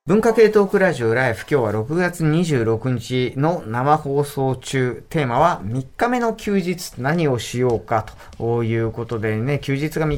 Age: 40-59